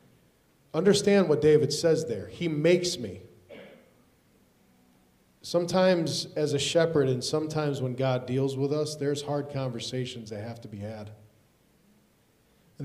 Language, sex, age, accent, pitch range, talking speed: English, male, 40-59, American, 125-160 Hz, 130 wpm